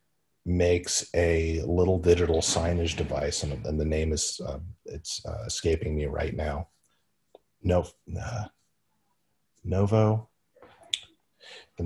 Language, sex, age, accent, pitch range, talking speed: English, male, 30-49, American, 85-110 Hz, 110 wpm